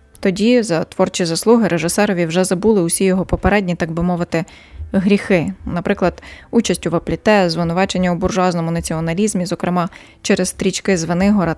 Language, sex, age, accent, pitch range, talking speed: Ukrainian, female, 20-39, native, 175-205 Hz, 135 wpm